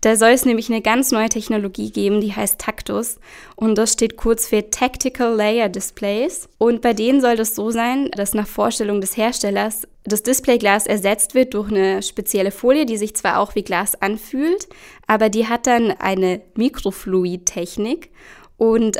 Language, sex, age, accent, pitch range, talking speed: German, female, 10-29, German, 205-245 Hz, 170 wpm